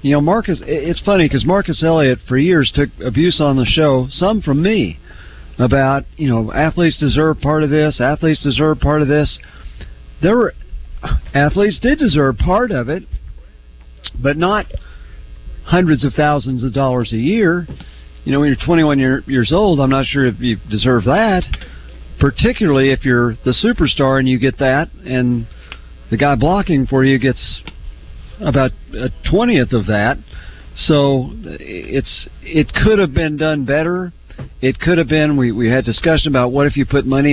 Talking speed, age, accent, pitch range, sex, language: 170 wpm, 40-59, American, 115-160 Hz, male, English